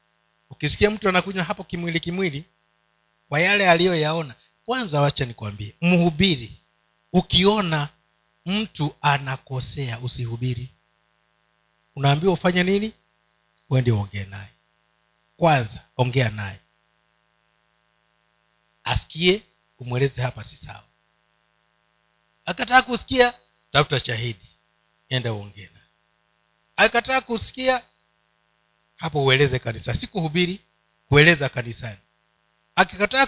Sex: male